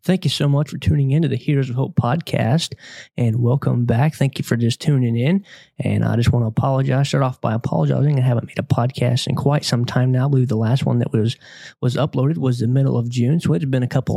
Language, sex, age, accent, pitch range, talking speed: English, male, 20-39, American, 125-145 Hz, 265 wpm